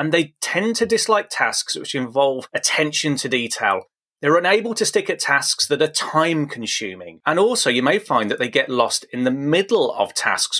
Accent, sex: British, male